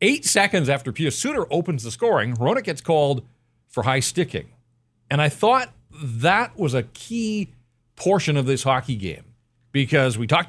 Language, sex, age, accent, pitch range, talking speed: English, male, 40-59, American, 120-155 Hz, 165 wpm